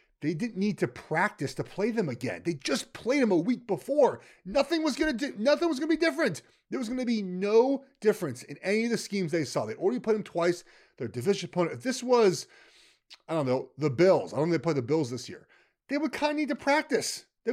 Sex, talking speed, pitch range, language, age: male, 245 wpm, 135-215 Hz, English, 30-49